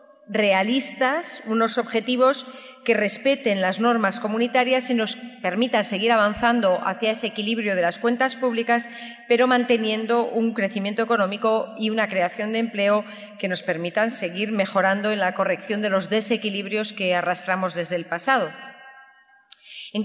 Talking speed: 140 wpm